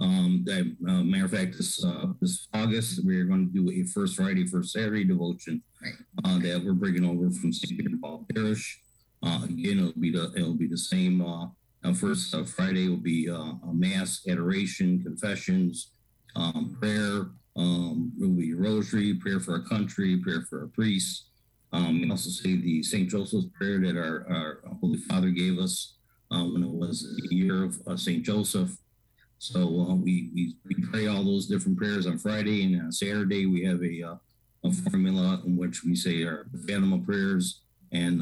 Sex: male